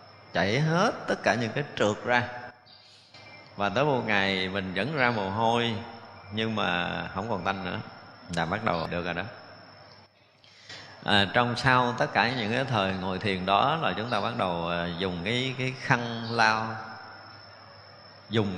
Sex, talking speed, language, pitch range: male, 165 wpm, Vietnamese, 95-115 Hz